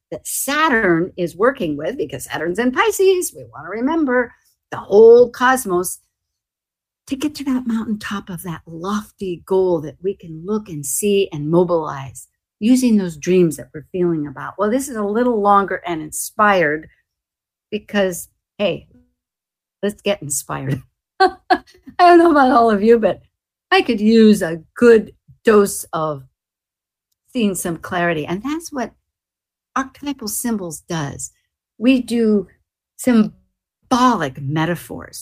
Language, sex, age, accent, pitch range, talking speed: English, female, 50-69, American, 165-255 Hz, 140 wpm